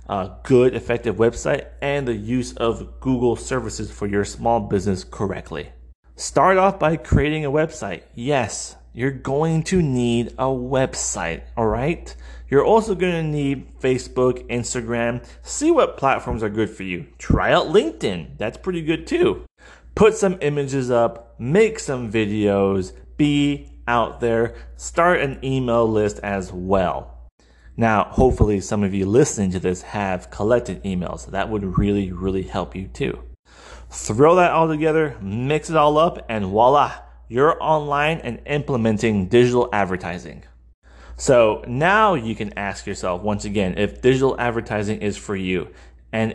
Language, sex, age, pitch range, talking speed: English, male, 30-49, 100-140 Hz, 150 wpm